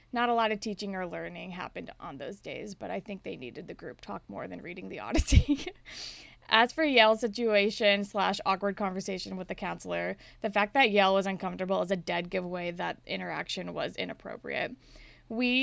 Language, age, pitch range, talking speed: English, 20-39, 190-230 Hz, 190 wpm